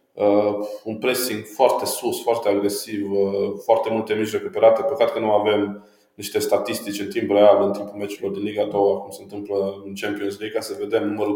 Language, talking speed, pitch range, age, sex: Romanian, 195 wpm, 100-135 Hz, 20-39, male